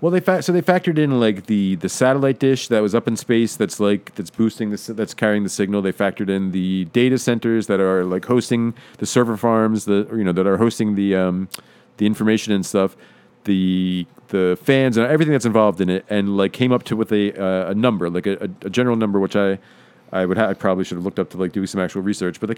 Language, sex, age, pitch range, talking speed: English, male, 40-59, 95-120 Hz, 250 wpm